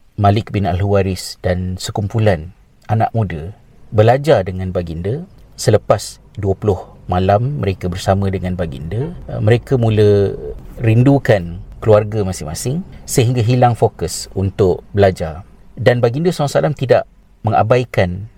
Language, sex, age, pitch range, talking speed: Malay, male, 40-59, 95-120 Hz, 105 wpm